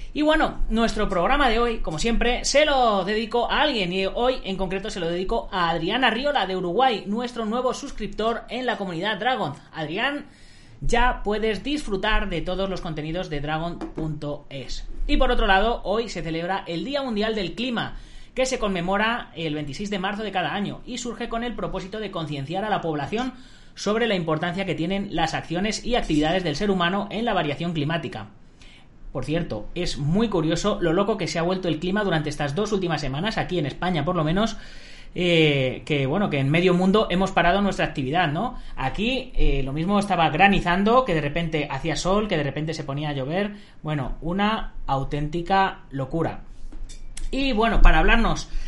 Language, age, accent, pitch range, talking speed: Spanish, 30-49, Spanish, 160-215 Hz, 185 wpm